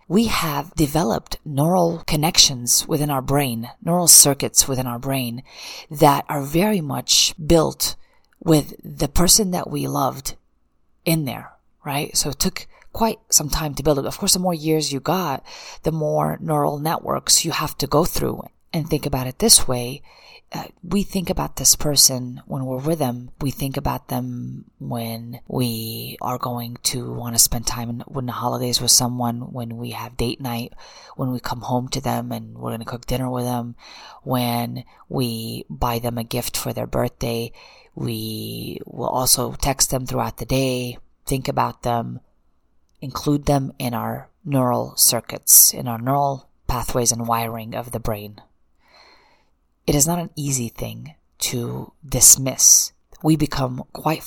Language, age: English, 30-49